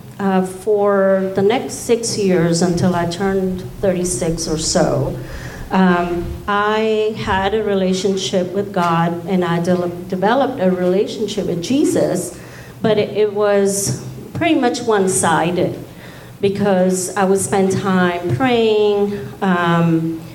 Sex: female